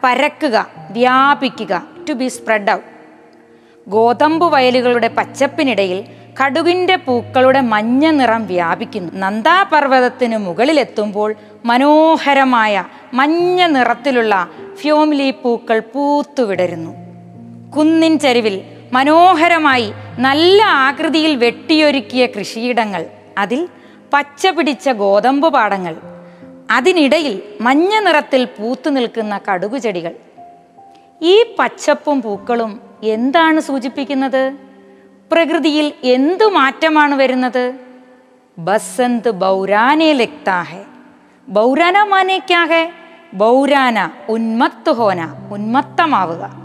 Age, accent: 20-39, native